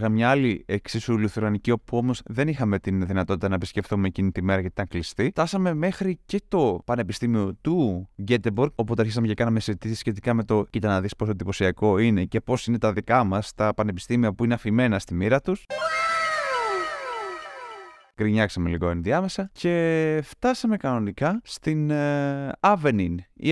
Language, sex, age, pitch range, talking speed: Greek, male, 20-39, 110-165 Hz, 160 wpm